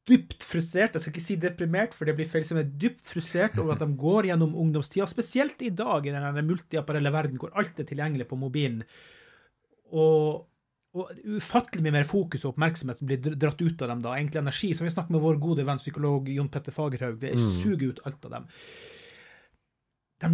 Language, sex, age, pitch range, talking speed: English, male, 30-49, 140-195 Hz, 200 wpm